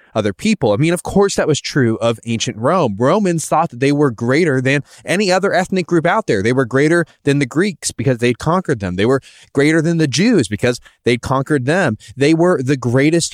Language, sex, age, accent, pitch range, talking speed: English, male, 20-39, American, 125-175 Hz, 220 wpm